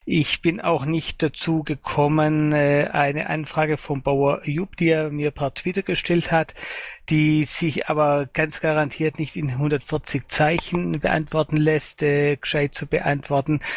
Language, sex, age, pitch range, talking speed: German, male, 60-79, 140-165 Hz, 150 wpm